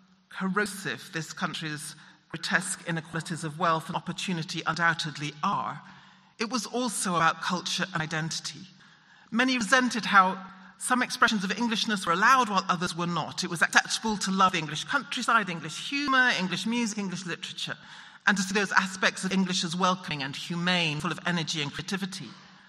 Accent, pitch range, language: British, 170-220 Hz, English